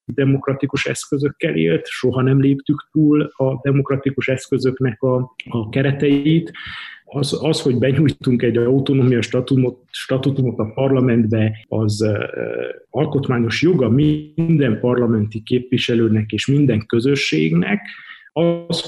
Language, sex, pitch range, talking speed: Hungarian, male, 115-145 Hz, 105 wpm